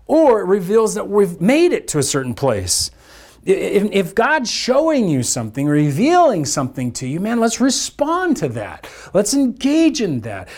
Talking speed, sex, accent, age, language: 165 wpm, male, American, 40-59, English